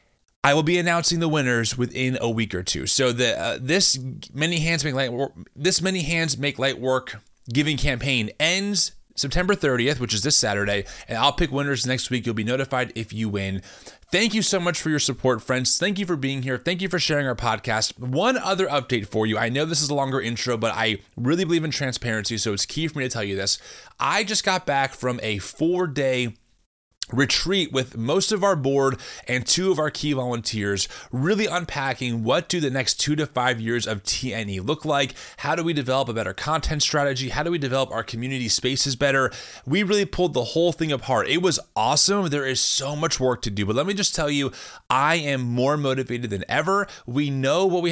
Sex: male